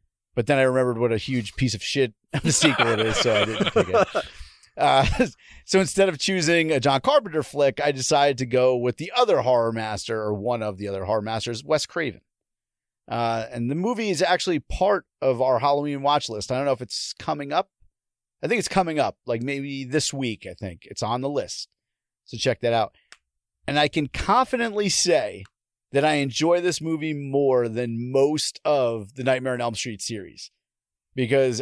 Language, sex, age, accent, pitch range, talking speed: English, male, 40-59, American, 120-165 Hz, 200 wpm